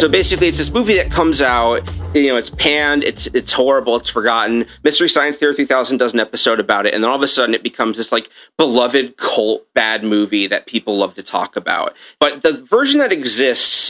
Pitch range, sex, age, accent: 110-160 Hz, male, 30-49, American